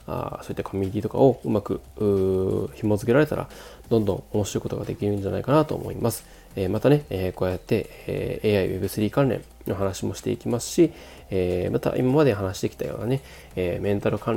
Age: 20-39